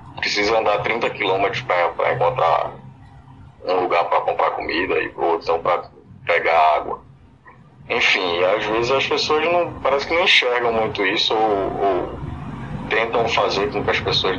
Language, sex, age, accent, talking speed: Portuguese, male, 20-39, Brazilian, 155 wpm